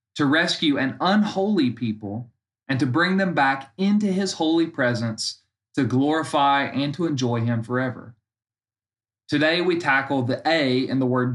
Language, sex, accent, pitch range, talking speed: English, male, American, 115-160 Hz, 155 wpm